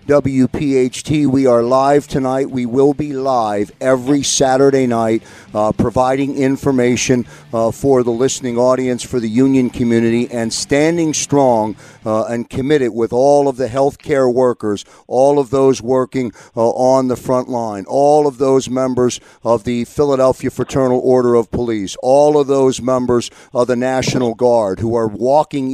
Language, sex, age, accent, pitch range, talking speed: English, male, 50-69, American, 120-135 Hz, 160 wpm